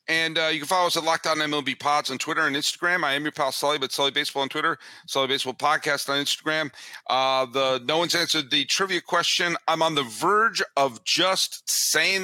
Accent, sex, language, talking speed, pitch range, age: American, male, English, 225 wpm, 110-150 Hz, 40-59